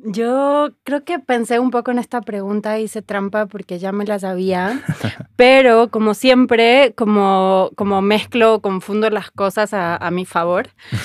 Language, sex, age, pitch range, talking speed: Spanish, female, 20-39, 185-220 Hz, 165 wpm